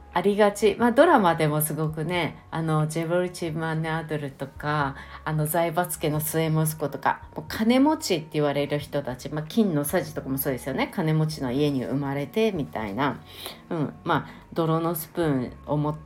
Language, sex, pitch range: Japanese, female, 145-205 Hz